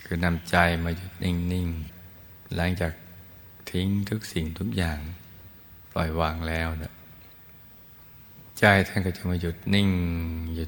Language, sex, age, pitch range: Thai, male, 20-39, 80-95 Hz